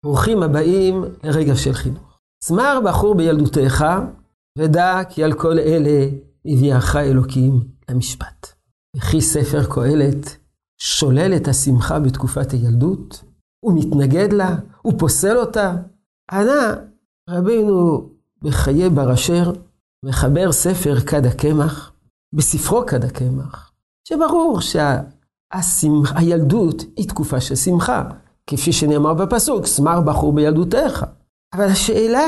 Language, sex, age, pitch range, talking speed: Hebrew, male, 50-69, 145-200 Hz, 105 wpm